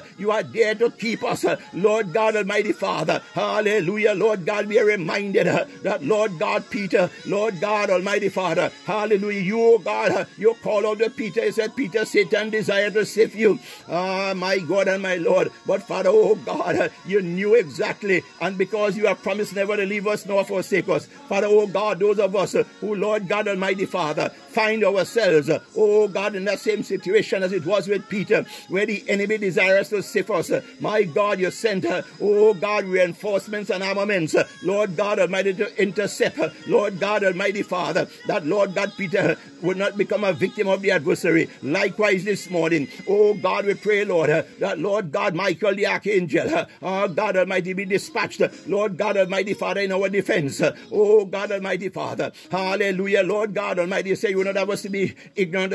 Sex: male